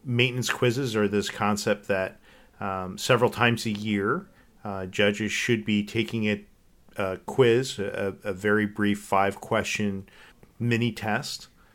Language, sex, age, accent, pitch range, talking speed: English, male, 40-59, American, 100-115 Hz, 130 wpm